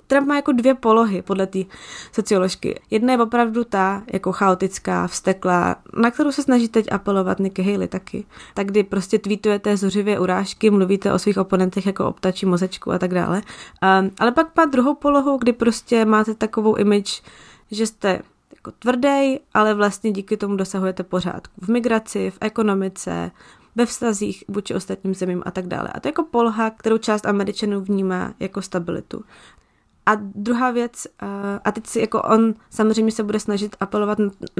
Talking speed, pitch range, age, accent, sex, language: 170 wpm, 190-225 Hz, 20-39, native, female, Czech